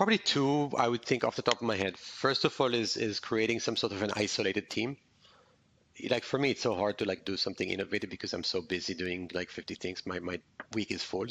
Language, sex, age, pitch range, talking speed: English, male, 30-49, 100-120 Hz, 250 wpm